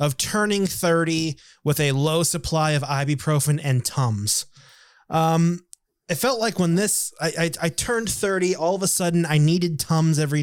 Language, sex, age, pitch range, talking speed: English, male, 20-39, 140-170 Hz, 175 wpm